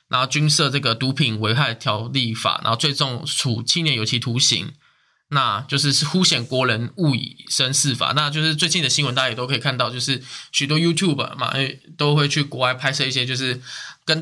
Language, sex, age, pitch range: Chinese, male, 20-39, 130-165 Hz